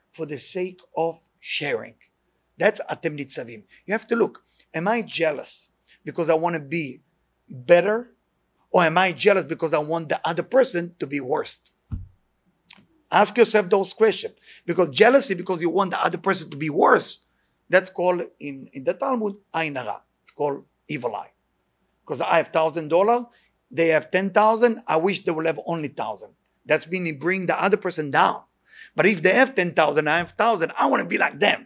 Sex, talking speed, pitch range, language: male, 180 wpm, 165-230 Hz, English